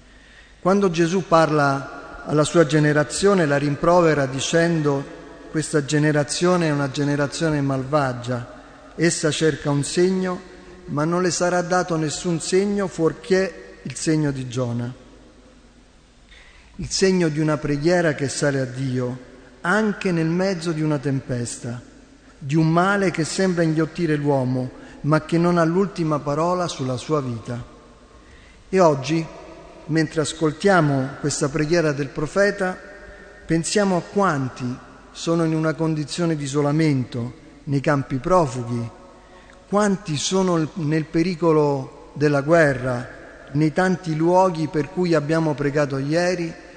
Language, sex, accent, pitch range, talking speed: Italian, male, native, 140-175 Hz, 125 wpm